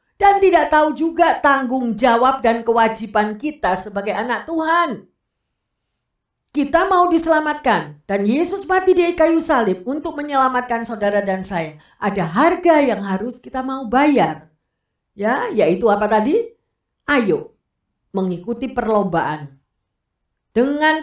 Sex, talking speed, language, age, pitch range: female, 115 wpm, Indonesian, 50-69, 195-300 Hz